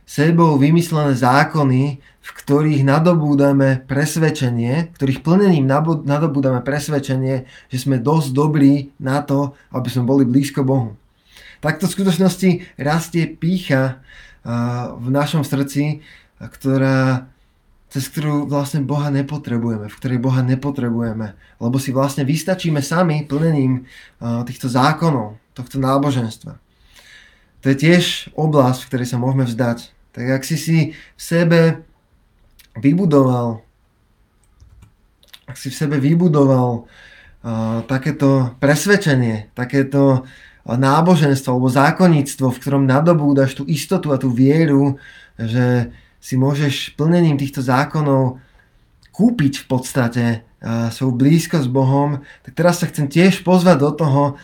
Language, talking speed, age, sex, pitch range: Slovak, 120 wpm, 20-39, male, 125-150 Hz